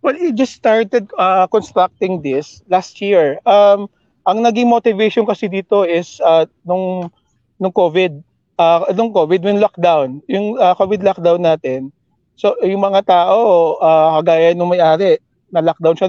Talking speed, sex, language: 150 wpm, male, English